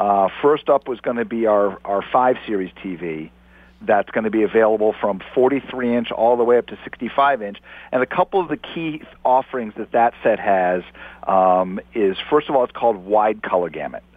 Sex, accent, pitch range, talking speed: male, American, 100-125 Hz, 190 wpm